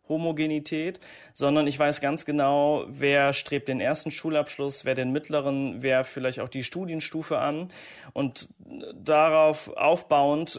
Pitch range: 135-155 Hz